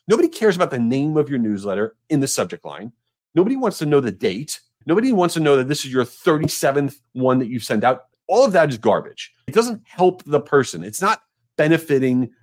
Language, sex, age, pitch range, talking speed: English, male, 40-59, 125-180 Hz, 215 wpm